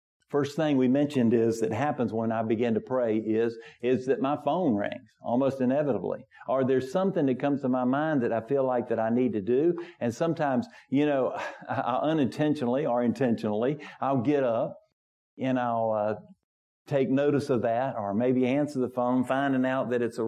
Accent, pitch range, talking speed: American, 115-135 Hz, 195 wpm